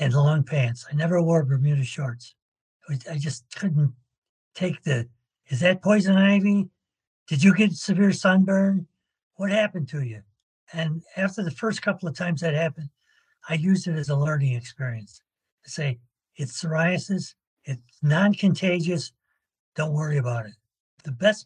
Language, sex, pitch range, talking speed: English, male, 130-175 Hz, 155 wpm